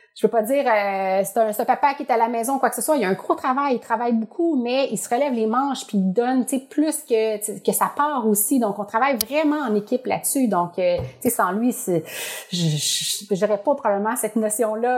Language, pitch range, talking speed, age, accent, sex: French, 205-265 Hz, 245 wpm, 30-49, Canadian, female